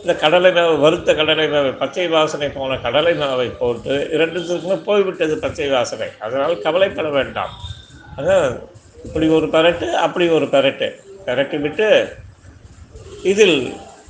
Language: Tamil